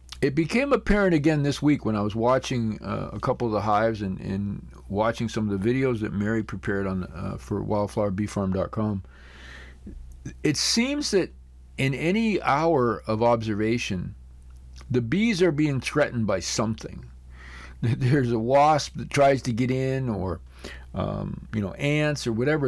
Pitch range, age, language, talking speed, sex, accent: 95-140 Hz, 40-59, English, 160 wpm, male, American